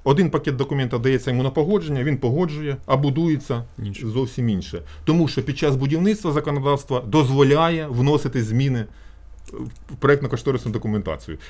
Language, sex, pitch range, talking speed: Ukrainian, male, 110-155 Hz, 130 wpm